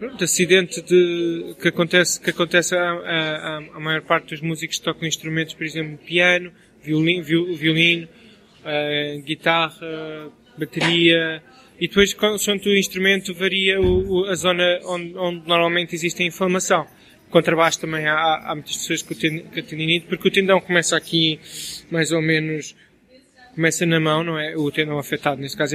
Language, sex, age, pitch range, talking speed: Portuguese, male, 20-39, 155-175 Hz, 155 wpm